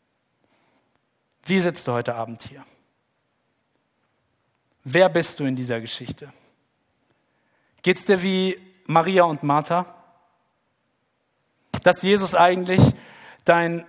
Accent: German